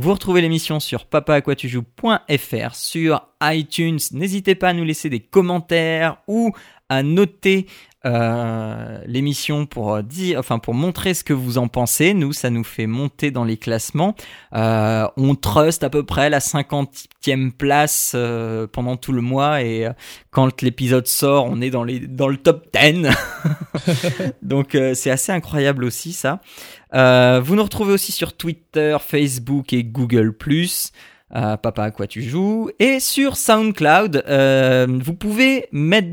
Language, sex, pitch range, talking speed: French, male, 125-165 Hz, 155 wpm